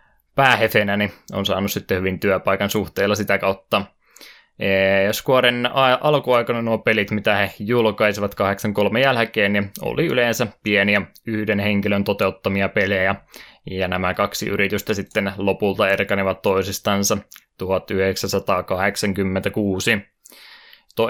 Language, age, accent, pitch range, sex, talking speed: Finnish, 20-39, native, 100-110 Hz, male, 110 wpm